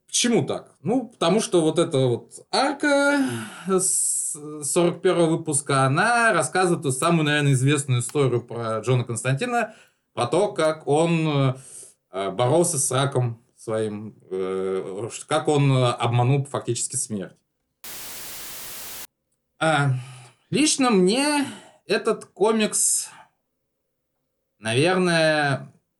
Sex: male